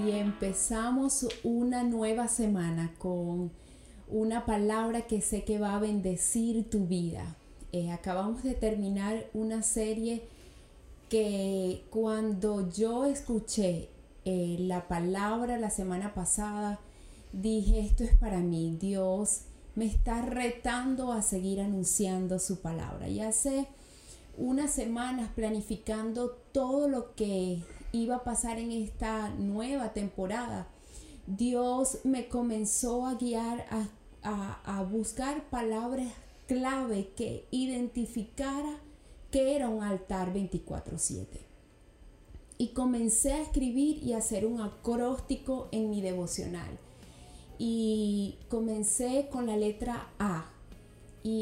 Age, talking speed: 30-49, 115 wpm